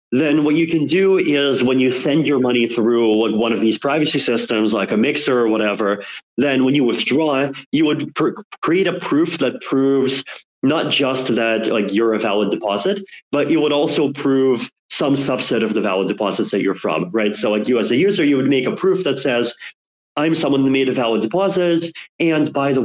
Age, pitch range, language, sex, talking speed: 30-49, 110-135 Hz, English, male, 210 wpm